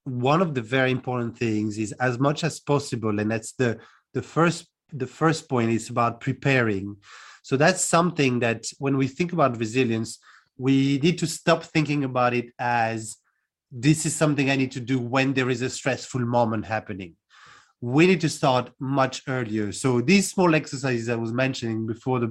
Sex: male